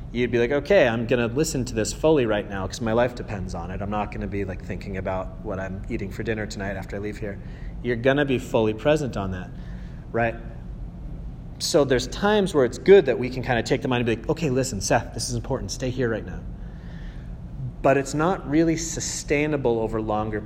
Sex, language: male, English